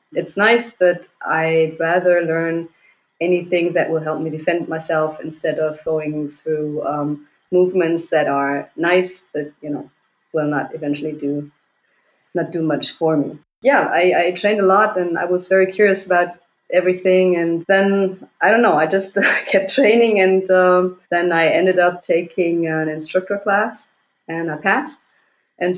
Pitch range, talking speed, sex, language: 160-190 Hz, 165 wpm, female, English